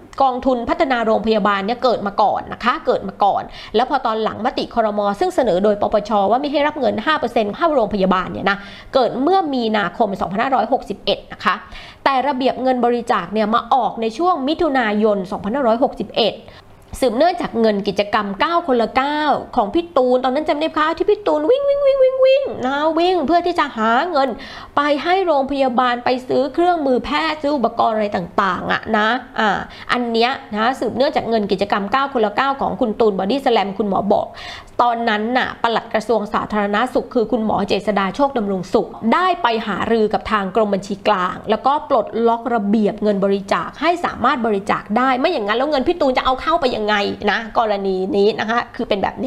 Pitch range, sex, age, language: 215-285 Hz, female, 20-39, Thai